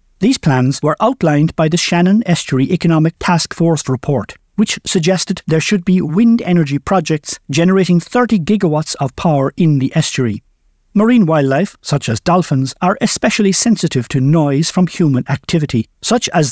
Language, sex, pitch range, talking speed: English, male, 135-190 Hz, 155 wpm